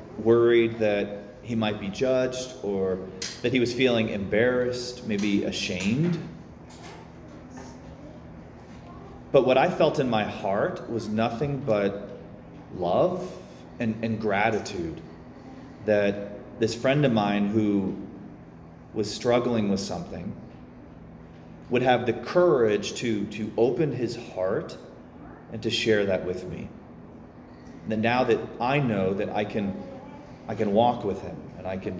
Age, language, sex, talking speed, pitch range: 30-49, English, male, 130 wpm, 85-120 Hz